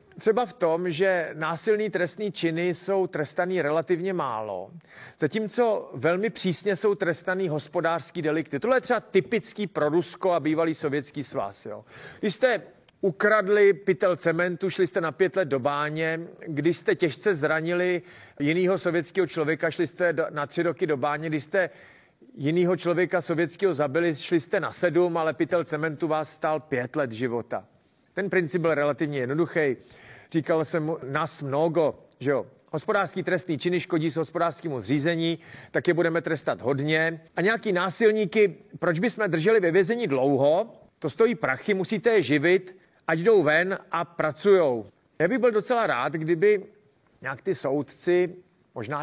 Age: 40-59